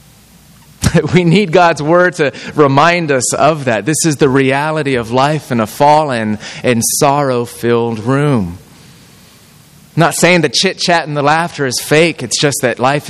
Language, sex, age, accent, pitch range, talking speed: English, male, 30-49, American, 125-170 Hz, 170 wpm